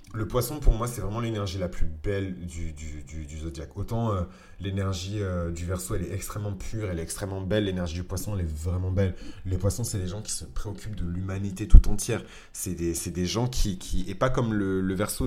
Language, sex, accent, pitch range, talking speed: French, male, French, 90-105 Hz, 240 wpm